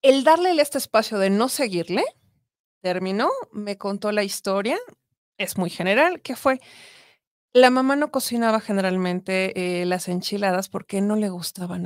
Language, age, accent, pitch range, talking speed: Spanish, 30-49, Mexican, 190-255 Hz, 145 wpm